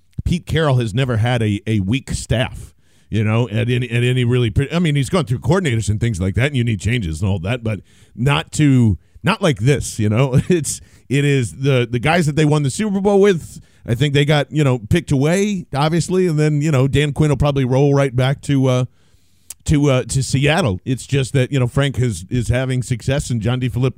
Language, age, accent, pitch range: English, 40-59, American, 115-145 Hz